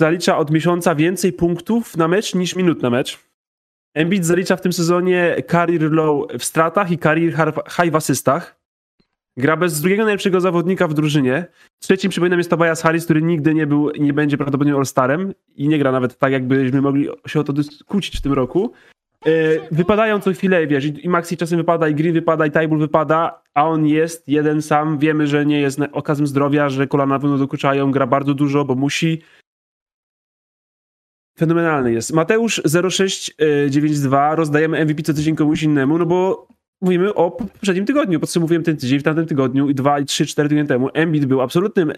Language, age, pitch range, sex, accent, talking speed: Polish, 20-39, 140-170 Hz, male, native, 180 wpm